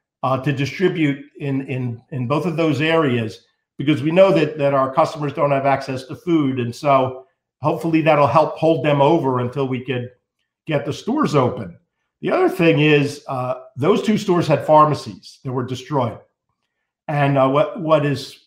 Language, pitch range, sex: English, 130-165 Hz, male